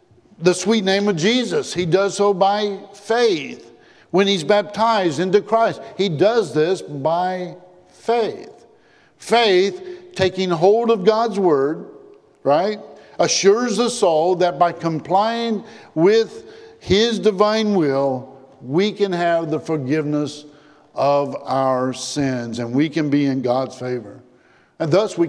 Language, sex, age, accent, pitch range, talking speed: English, male, 50-69, American, 150-210 Hz, 130 wpm